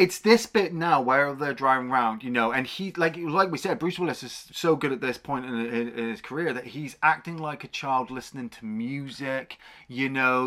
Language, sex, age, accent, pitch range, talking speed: English, male, 30-49, British, 120-165 Hz, 230 wpm